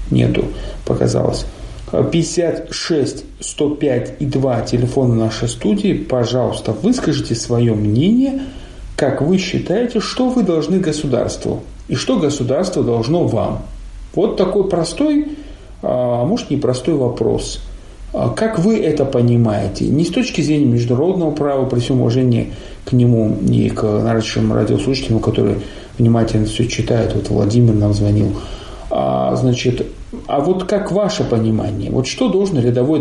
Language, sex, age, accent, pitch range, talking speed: Russian, male, 40-59, native, 105-150 Hz, 125 wpm